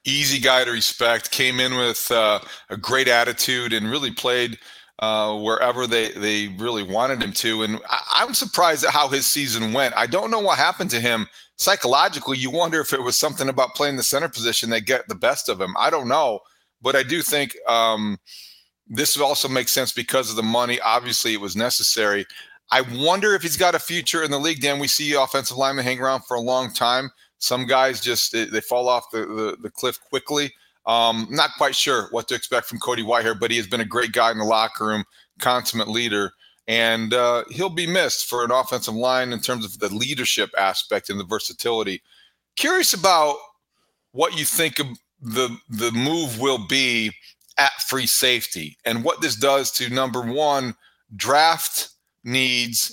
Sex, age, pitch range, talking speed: male, 40-59, 115-140 Hz, 195 wpm